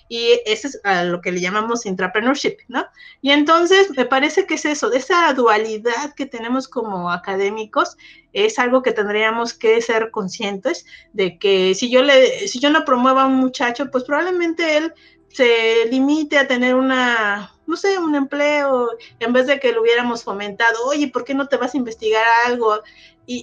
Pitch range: 215-290 Hz